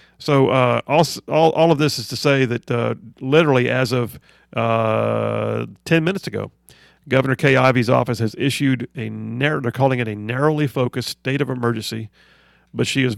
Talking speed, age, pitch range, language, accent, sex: 175 wpm, 40-59, 115-145 Hz, English, American, male